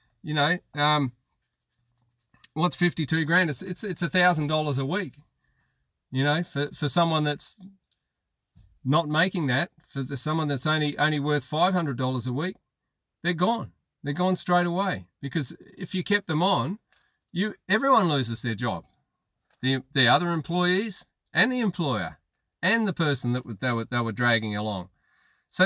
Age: 40-59